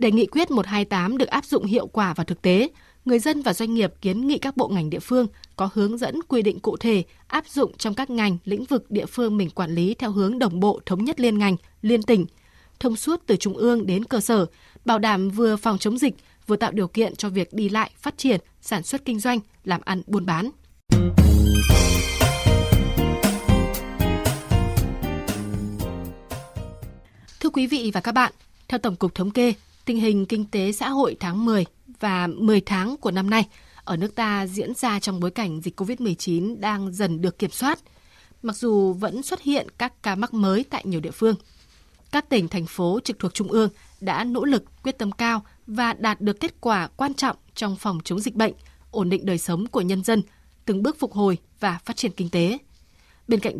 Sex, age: female, 20-39